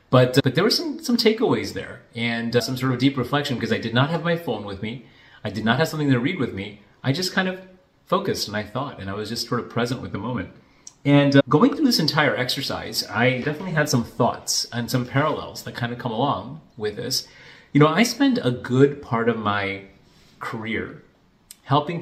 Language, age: English, 30-49